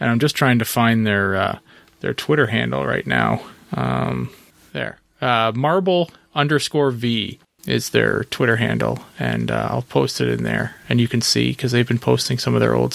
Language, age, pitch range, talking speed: English, 30-49, 110-135 Hz, 195 wpm